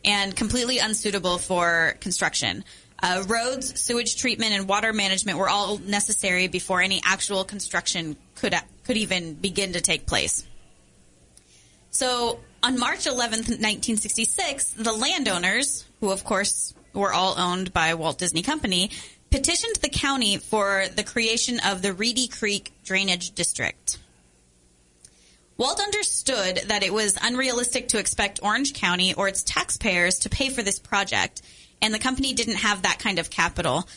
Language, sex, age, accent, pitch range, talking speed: English, female, 20-39, American, 185-240 Hz, 145 wpm